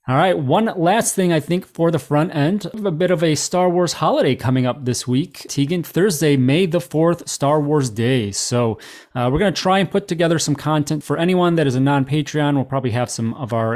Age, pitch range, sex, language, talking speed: 30-49, 125-160 Hz, male, English, 230 wpm